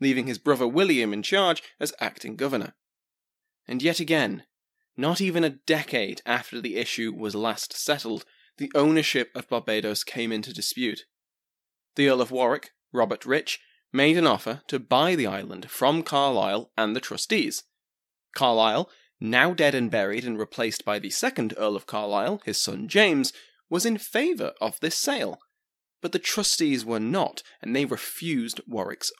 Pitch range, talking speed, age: 120-180 Hz, 160 wpm, 20-39